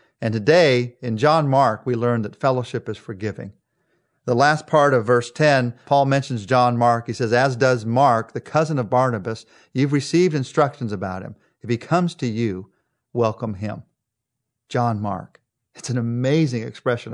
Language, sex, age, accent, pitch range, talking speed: English, male, 40-59, American, 115-145 Hz, 170 wpm